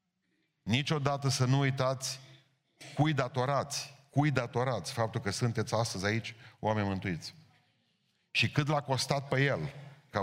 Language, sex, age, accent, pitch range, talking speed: Romanian, male, 40-59, native, 110-140 Hz, 130 wpm